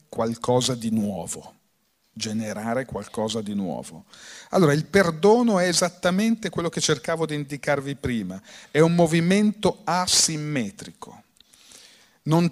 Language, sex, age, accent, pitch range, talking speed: Italian, male, 40-59, native, 125-180 Hz, 110 wpm